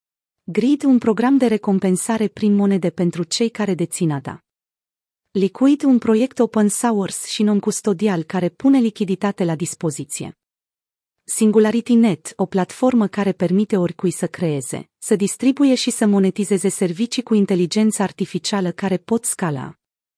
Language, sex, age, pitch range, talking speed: Romanian, female, 30-49, 180-230 Hz, 130 wpm